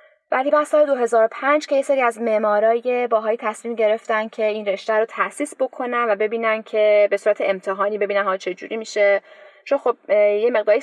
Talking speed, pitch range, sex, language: 175 wpm, 200-255 Hz, female, Persian